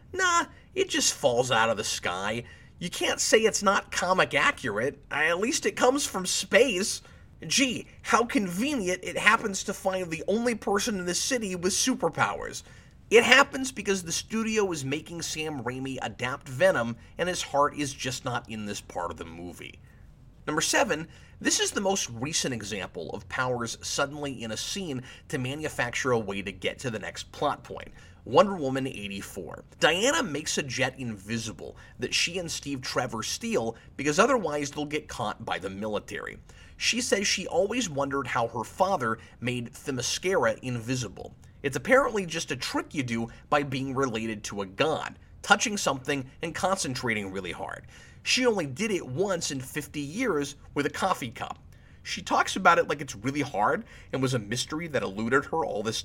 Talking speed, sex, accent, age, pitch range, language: 175 wpm, male, American, 30-49, 125-195 Hz, English